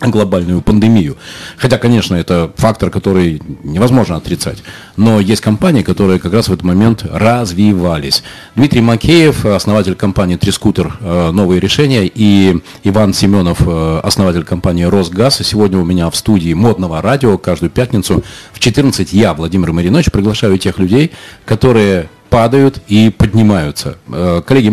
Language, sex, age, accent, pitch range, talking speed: Russian, male, 40-59, native, 90-115 Hz, 135 wpm